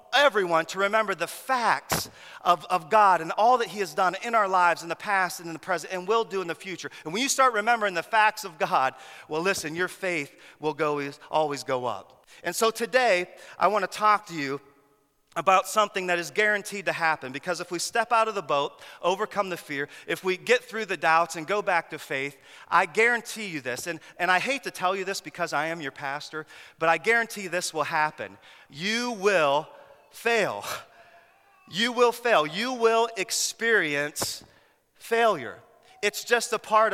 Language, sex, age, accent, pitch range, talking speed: English, male, 40-59, American, 155-210 Hz, 200 wpm